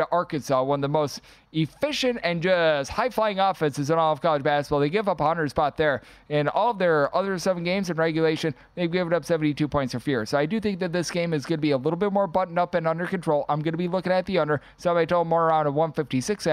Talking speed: 260 wpm